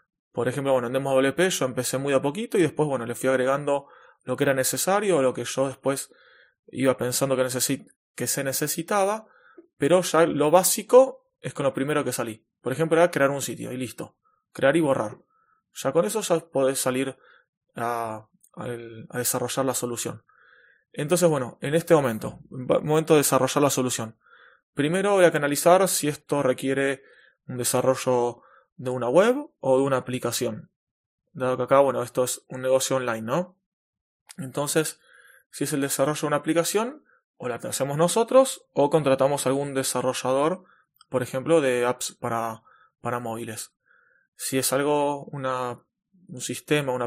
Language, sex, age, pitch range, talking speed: Spanish, male, 20-39, 125-170 Hz, 170 wpm